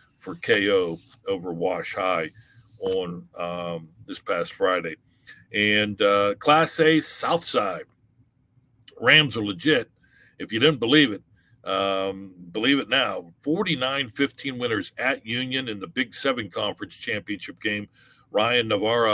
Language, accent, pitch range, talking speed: English, American, 100-145 Hz, 130 wpm